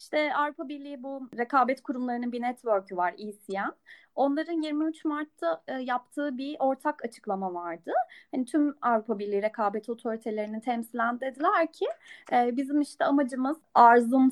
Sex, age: female, 30-49